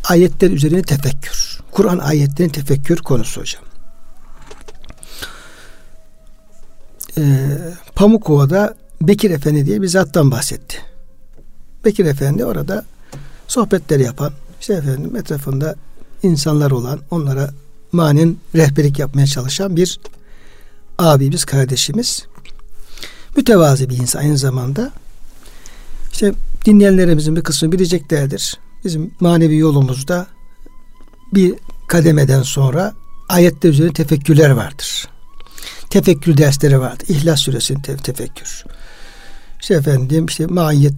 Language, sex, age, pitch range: Turkish, male, 60-79, 140-180 Hz